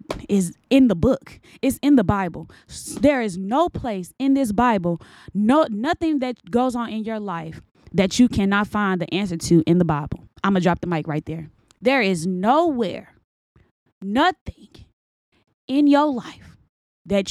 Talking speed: 165 wpm